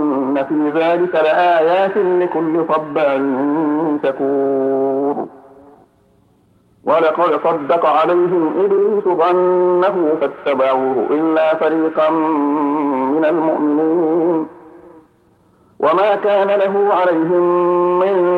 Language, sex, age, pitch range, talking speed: Arabic, male, 50-69, 145-180 Hz, 70 wpm